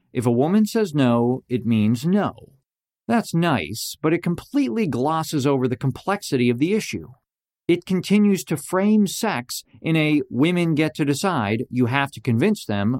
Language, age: English, 50-69